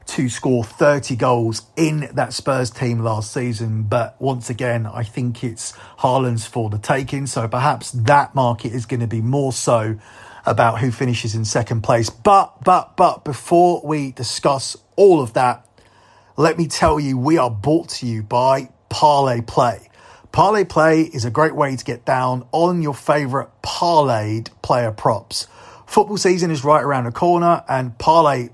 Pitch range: 120-155 Hz